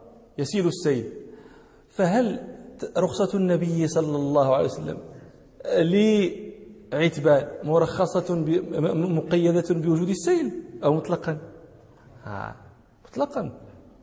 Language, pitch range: Danish, 145-210 Hz